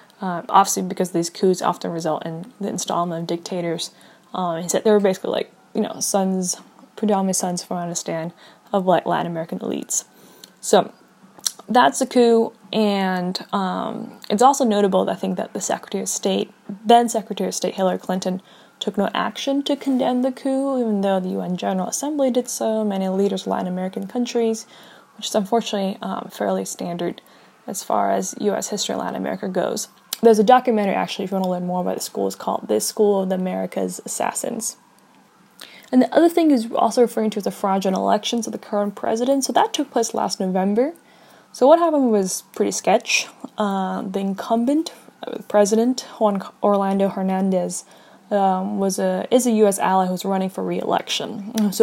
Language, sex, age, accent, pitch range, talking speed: English, female, 10-29, American, 190-230 Hz, 185 wpm